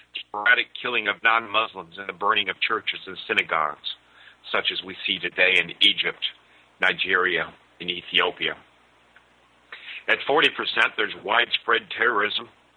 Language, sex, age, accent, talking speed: English, male, 50-69, American, 125 wpm